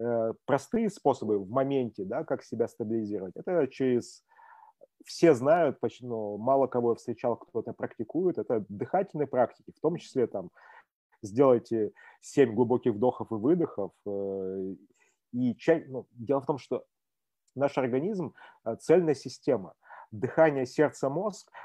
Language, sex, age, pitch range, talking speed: Russian, male, 30-49, 120-155 Hz, 135 wpm